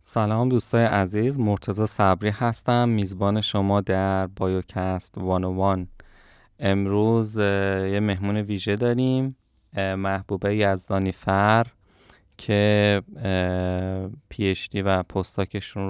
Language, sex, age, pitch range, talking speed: Persian, male, 20-39, 95-105 Hz, 95 wpm